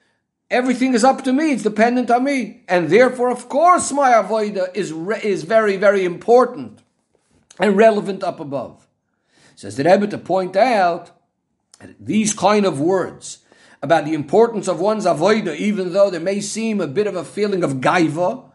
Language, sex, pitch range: English, male, 175-225 Hz